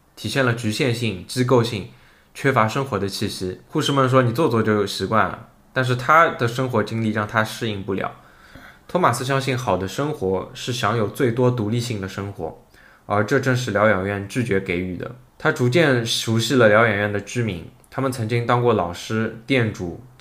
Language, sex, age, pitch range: Chinese, male, 20-39, 100-130 Hz